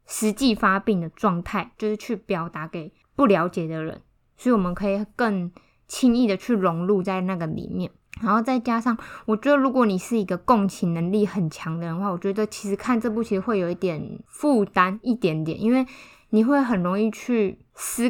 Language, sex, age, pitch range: Chinese, female, 10-29, 180-230 Hz